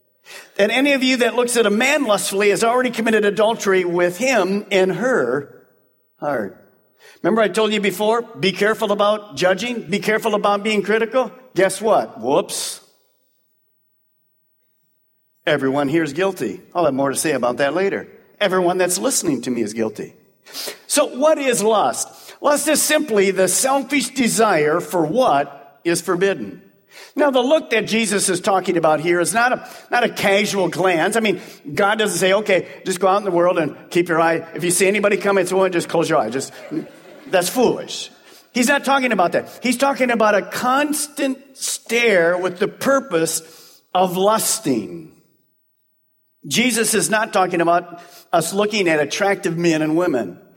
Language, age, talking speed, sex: English, 50-69, 165 wpm, male